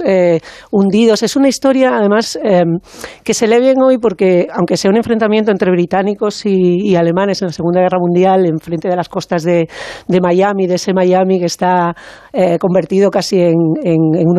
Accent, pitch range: Spanish, 175-210 Hz